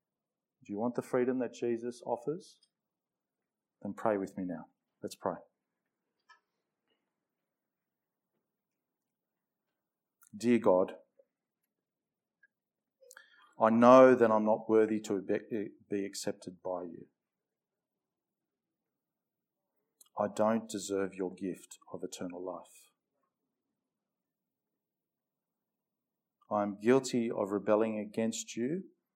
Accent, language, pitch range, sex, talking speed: Australian, English, 100-120 Hz, male, 85 wpm